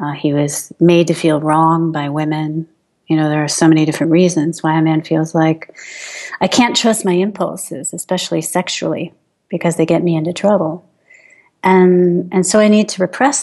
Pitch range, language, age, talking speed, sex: 160-195 Hz, English, 40-59, 190 wpm, female